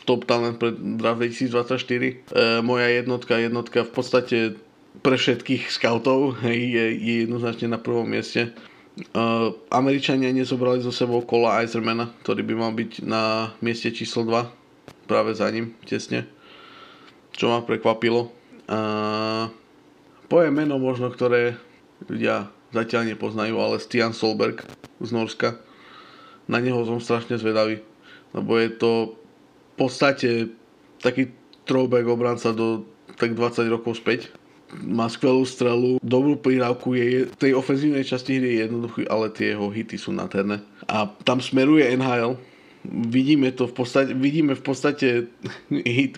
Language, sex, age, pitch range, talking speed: Slovak, male, 20-39, 115-130 Hz, 130 wpm